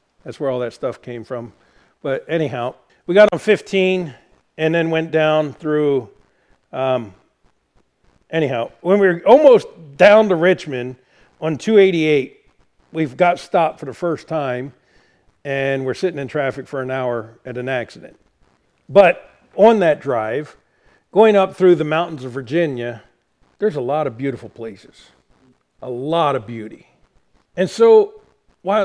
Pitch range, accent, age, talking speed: 130-205 Hz, American, 50-69, 150 wpm